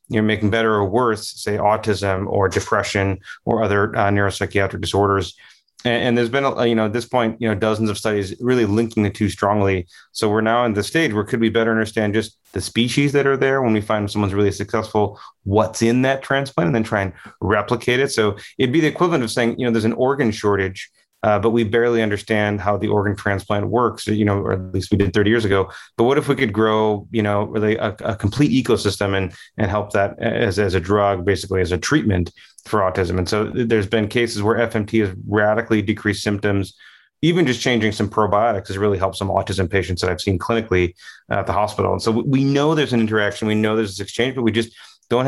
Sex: male